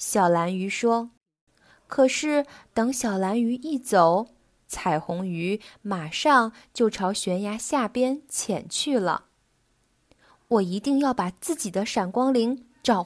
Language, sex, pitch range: Chinese, female, 200-275 Hz